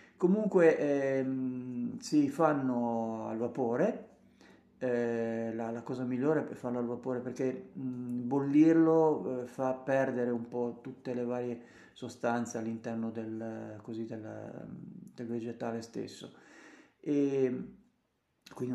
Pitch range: 120-150 Hz